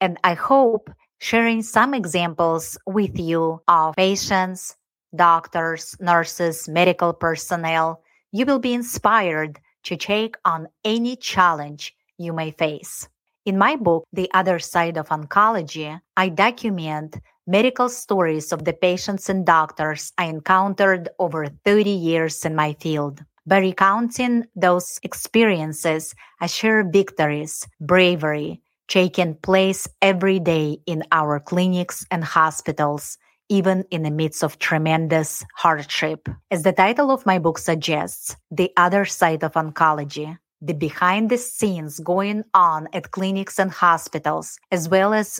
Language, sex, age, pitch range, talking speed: English, female, 30-49, 160-200 Hz, 130 wpm